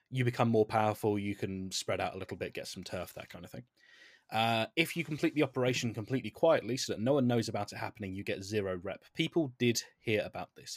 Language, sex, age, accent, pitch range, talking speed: English, male, 20-39, British, 105-140 Hz, 240 wpm